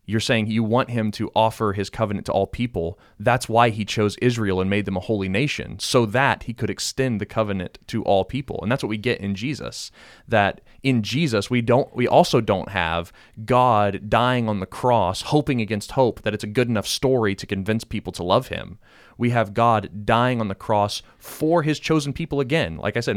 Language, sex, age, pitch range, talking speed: English, male, 30-49, 100-125 Hz, 220 wpm